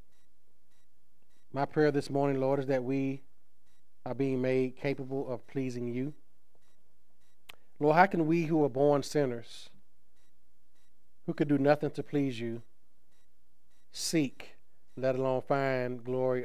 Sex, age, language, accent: male, 40-59, English, American